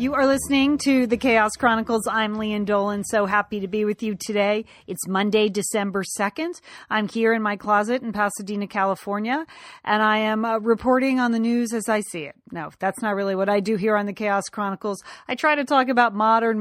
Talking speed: 215 wpm